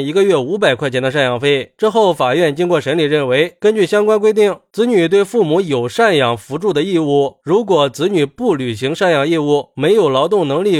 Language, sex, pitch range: Chinese, male, 145-200 Hz